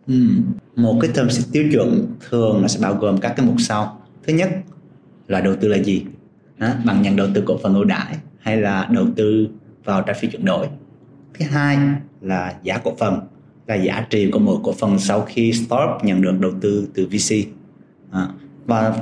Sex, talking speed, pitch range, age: male, 195 wpm, 95-135 Hz, 20-39